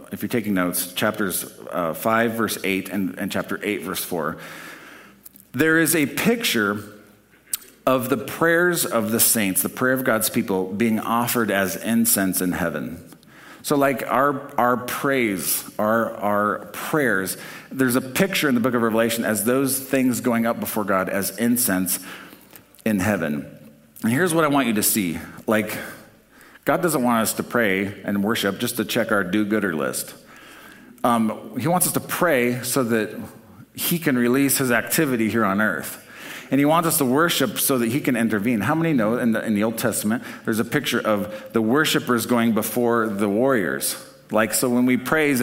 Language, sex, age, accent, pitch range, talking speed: English, male, 50-69, American, 105-130 Hz, 180 wpm